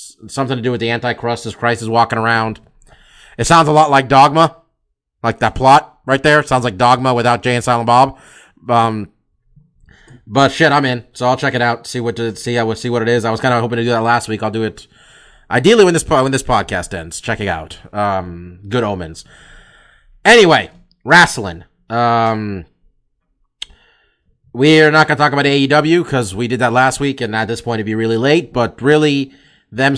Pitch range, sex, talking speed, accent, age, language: 115-135 Hz, male, 205 wpm, American, 30-49, English